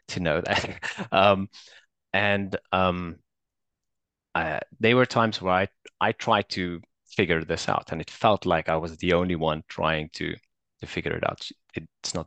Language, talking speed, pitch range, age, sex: English, 170 wpm, 85-95 Hz, 20-39, male